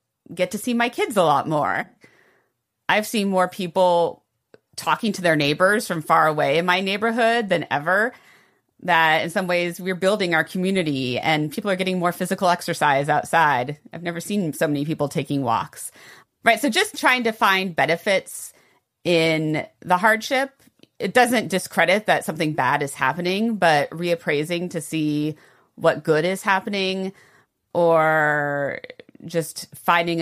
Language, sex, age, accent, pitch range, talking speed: English, female, 30-49, American, 155-195 Hz, 155 wpm